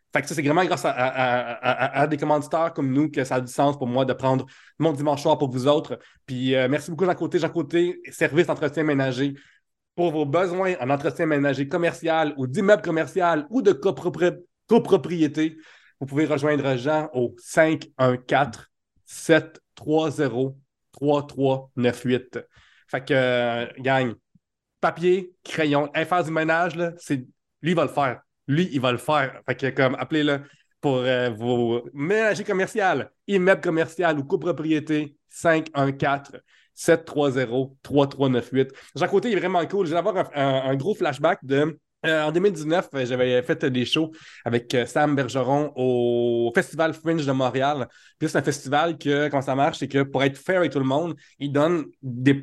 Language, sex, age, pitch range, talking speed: French, male, 30-49, 130-160 Hz, 160 wpm